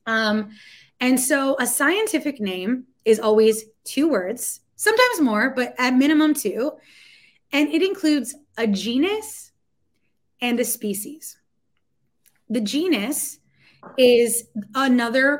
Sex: female